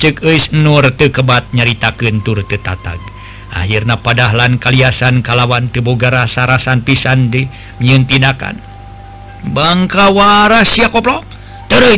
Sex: male